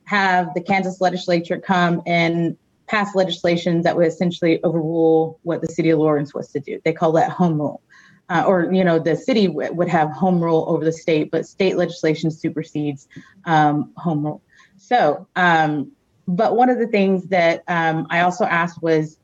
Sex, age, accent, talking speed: female, 30-49, American, 185 wpm